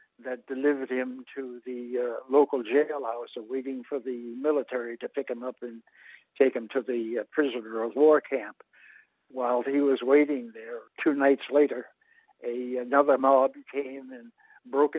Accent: American